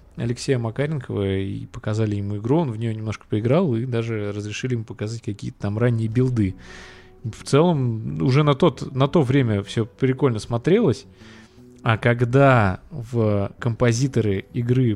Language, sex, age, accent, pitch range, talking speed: Russian, male, 20-39, native, 105-135 Hz, 140 wpm